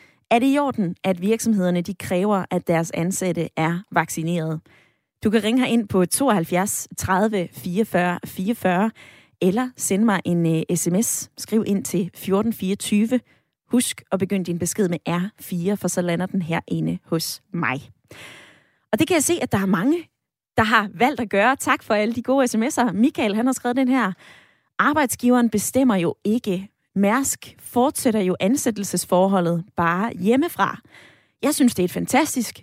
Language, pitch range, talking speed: Danish, 180-235 Hz, 165 wpm